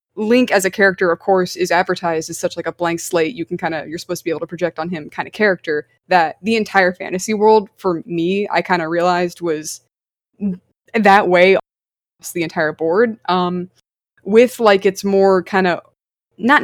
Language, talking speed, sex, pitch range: English, 200 wpm, female, 175-215 Hz